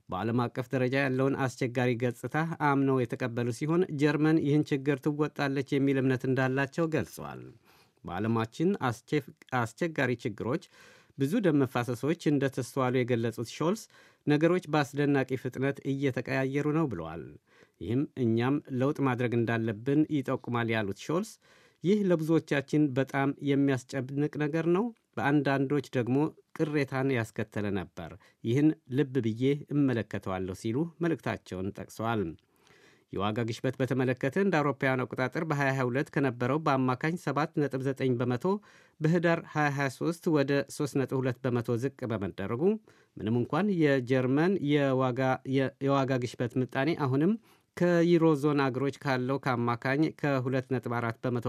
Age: 50-69